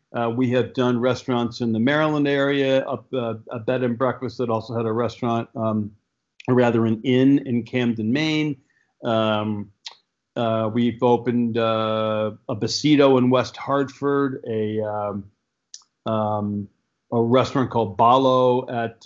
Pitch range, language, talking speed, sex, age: 110-130 Hz, English, 145 wpm, male, 50-69